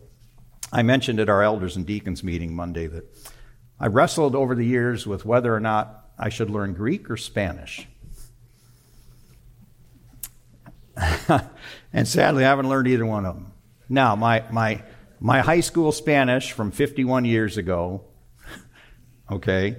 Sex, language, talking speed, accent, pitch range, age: male, English, 140 wpm, American, 110-125 Hz, 50-69